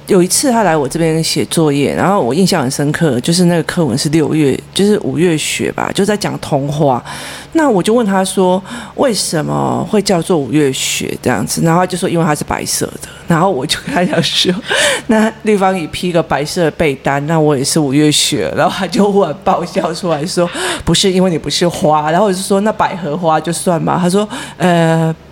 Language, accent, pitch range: Chinese, native, 155-195 Hz